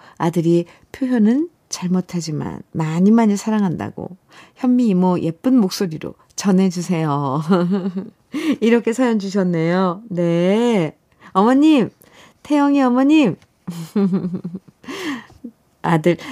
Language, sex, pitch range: Korean, female, 170-235 Hz